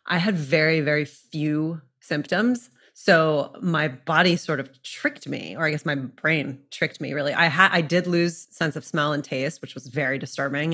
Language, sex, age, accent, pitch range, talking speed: English, female, 30-49, American, 145-175 Hz, 195 wpm